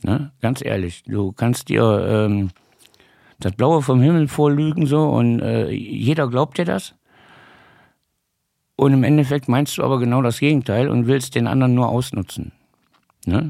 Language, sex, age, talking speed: German, male, 60-79, 155 wpm